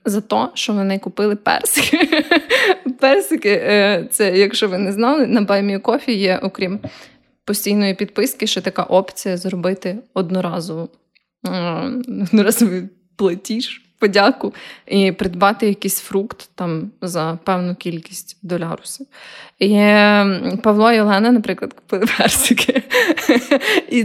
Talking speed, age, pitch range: 105 wpm, 20-39, 190-230 Hz